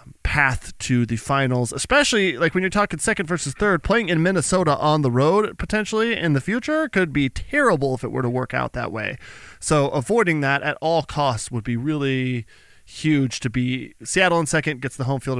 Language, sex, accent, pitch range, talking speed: English, male, American, 125-185 Hz, 205 wpm